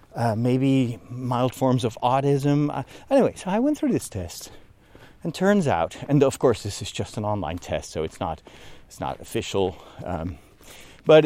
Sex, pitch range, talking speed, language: male, 105-145 Hz, 180 wpm, English